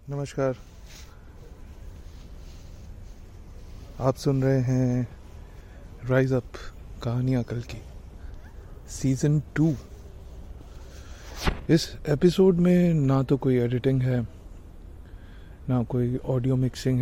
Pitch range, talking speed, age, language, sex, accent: 85-130 Hz, 85 wpm, 30-49, Hindi, male, native